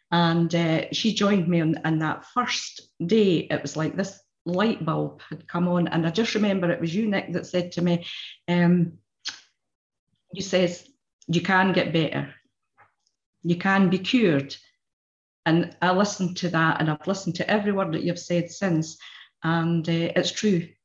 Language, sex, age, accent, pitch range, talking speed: English, female, 40-59, British, 165-190 Hz, 175 wpm